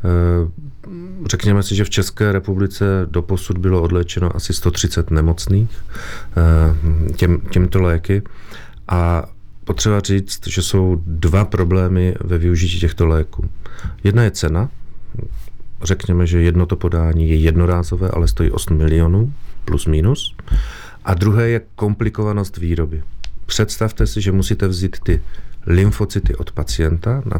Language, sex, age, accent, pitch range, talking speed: Czech, male, 40-59, native, 85-105 Hz, 125 wpm